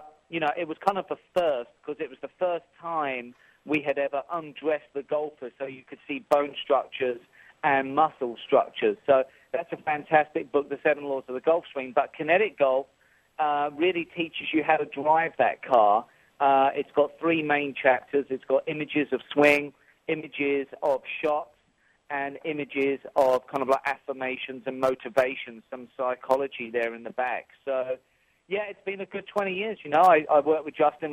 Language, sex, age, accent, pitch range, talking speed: English, male, 40-59, British, 130-150 Hz, 185 wpm